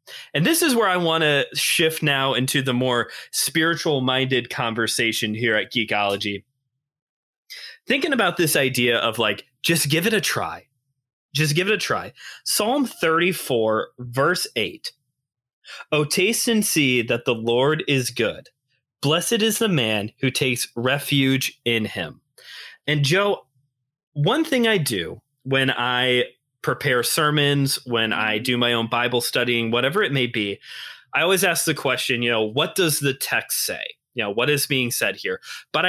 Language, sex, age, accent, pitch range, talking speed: English, male, 20-39, American, 120-160 Hz, 160 wpm